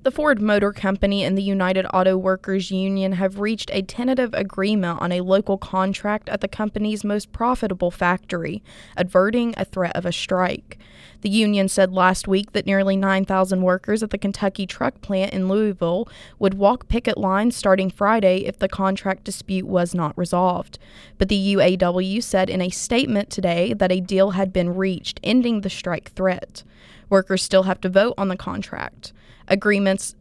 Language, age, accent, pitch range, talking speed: English, 20-39, American, 185-200 Hz, 175 wpm